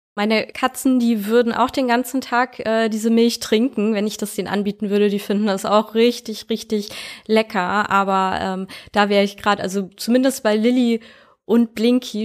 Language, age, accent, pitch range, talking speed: German, 20-39, German, 185-220 Hz, 180 wpm